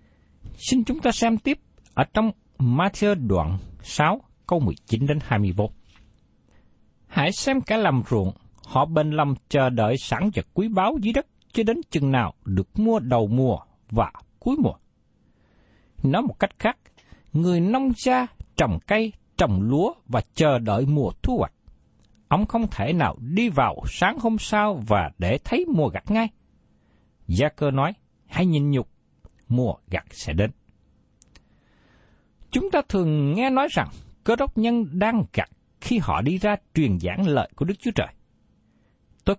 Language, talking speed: Vietnamese, 160 wpm